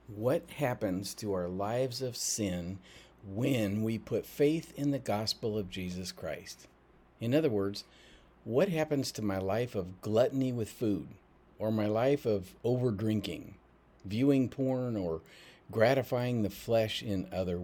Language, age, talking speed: English, 50-69, 145 wpm